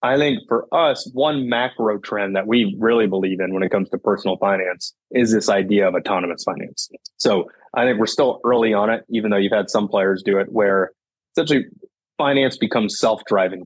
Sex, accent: male, American